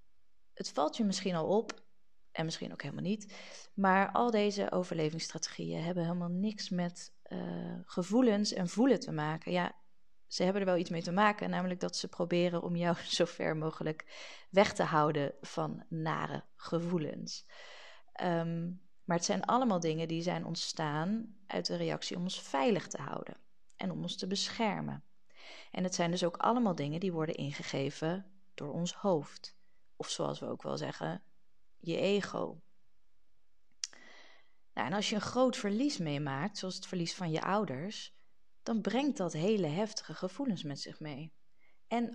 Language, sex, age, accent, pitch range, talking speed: Dutch, female, 30-49, Dutch, 160-205 Hz, 160 wpm